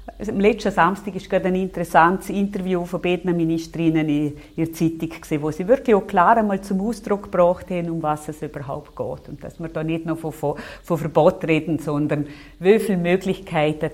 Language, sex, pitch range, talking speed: German, female, 150-195 Hz, 180 wpm